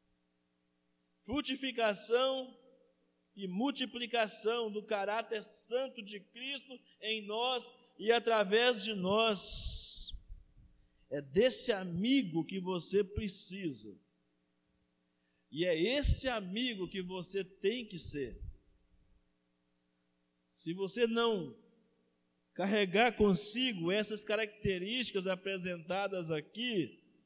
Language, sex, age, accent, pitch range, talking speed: Portuguese, male, 50-69, Brazilian, 150-230 Hz, 85 wpm